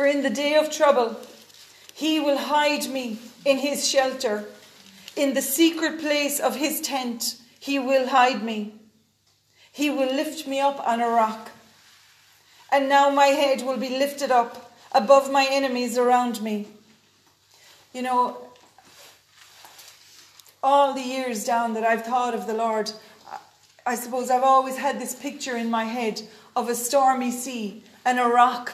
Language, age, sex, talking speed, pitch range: English, 40-59, female, 155 wpm, 230-270 Hz